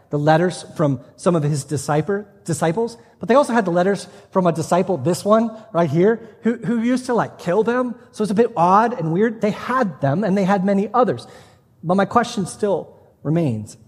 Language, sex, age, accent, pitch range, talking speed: English, male, 30-49, American, 155-200 Hz, 205 wpm